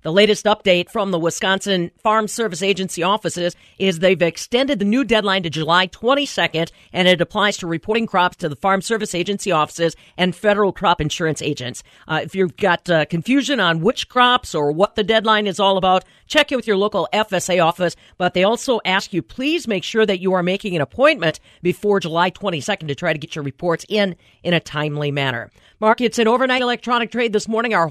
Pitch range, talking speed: 165-215 Hz, 205 wpm